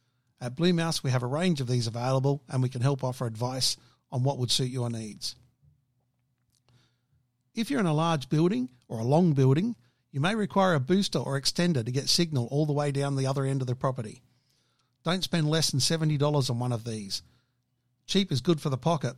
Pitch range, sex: 125-155 Hz, male